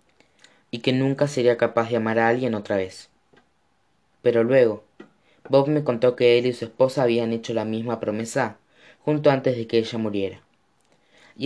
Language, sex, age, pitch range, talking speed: Spanish, female, 20-39, 110-140 Hz, 175 wpm